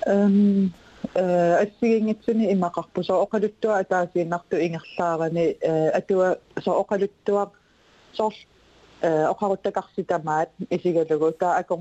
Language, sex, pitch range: English, female, 160-195 Hz